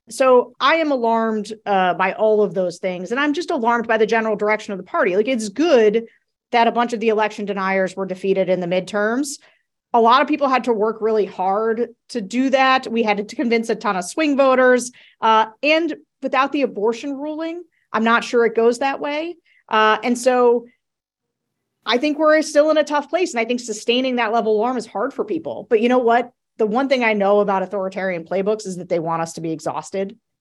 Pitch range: 195-240 Hz